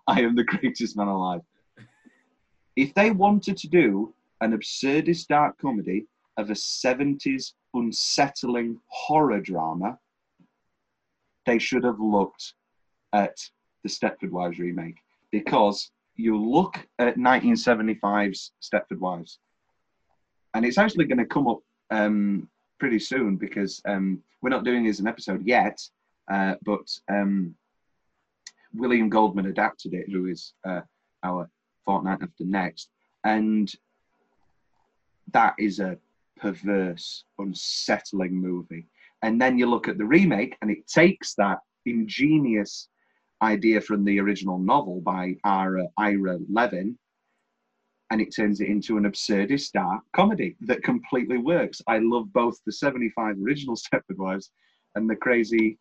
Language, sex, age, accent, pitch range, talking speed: English, male, 30-49, British, 95-120 Hz, 130 wpm